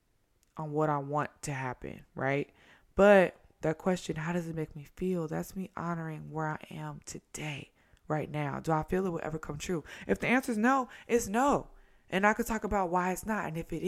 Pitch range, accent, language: 145-185 Hz, American, English